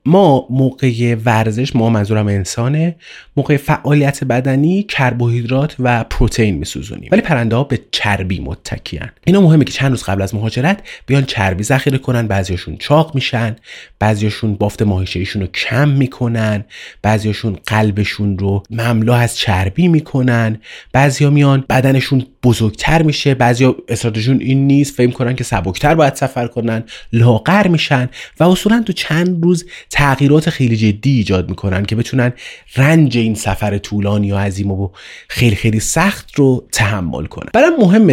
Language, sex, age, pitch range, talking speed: Persian, male, 30-49, 100-140 Hz, 145 wpm